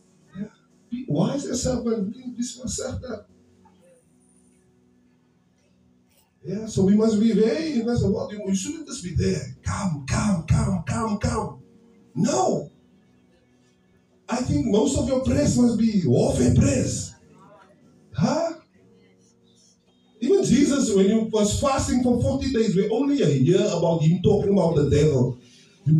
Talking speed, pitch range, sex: 125 wpm, 135-230 Hz, male